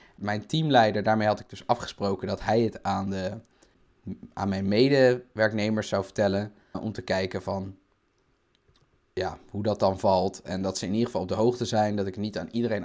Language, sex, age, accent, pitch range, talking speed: Dutch, male, 20-39, Dutch, 100-120 Hz, 195 wpm